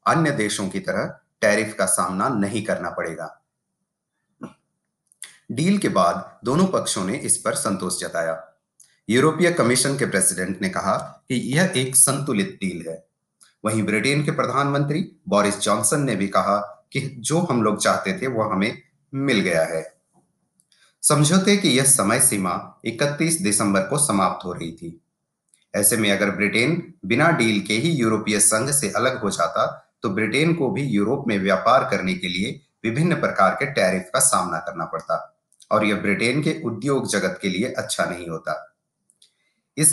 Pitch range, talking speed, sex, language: 100-150 Hz, 130 wpm, male, Hindi